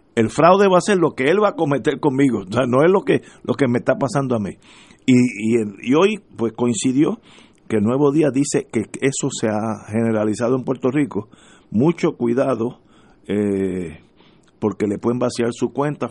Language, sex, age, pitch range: Spanish, male, 50-69, 115-140 Hz